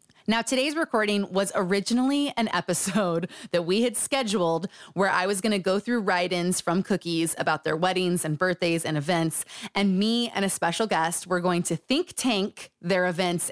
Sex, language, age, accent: female, English, 20-39, American